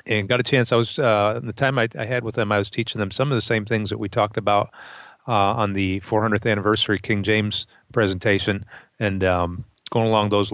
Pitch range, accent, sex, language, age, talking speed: 100-115 Hz, American, male, English, 40-59, 230 wpm